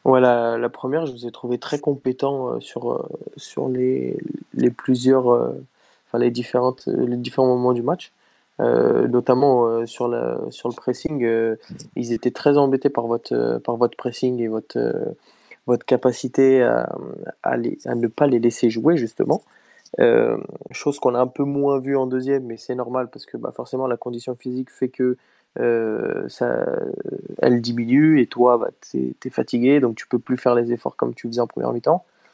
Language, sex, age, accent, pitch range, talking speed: French, male, 20-39, French, 120-130 Hz, 195 wpm